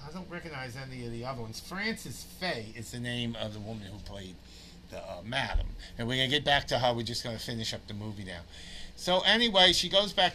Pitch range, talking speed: 95-150 Hz, 250 wpm